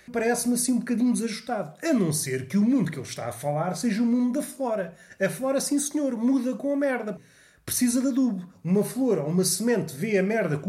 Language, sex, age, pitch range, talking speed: Portuguese, male, 30-49, 150-205 Hz, 230 wpm